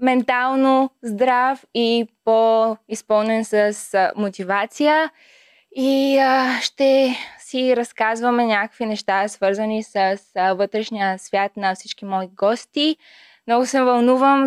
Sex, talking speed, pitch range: female, 100 wpm, 200-255 Hz